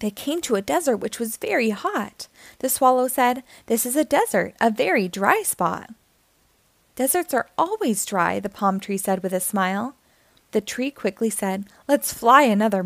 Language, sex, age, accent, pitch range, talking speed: English, female, 20-39, American, 205-285 Hz, 175 wpm